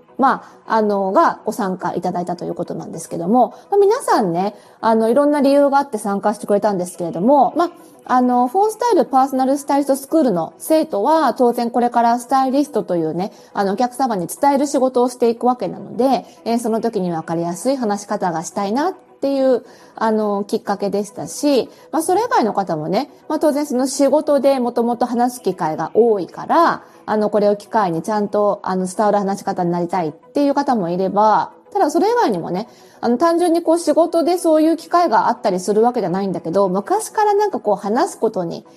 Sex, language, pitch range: female, Japanese, 195-285 Hz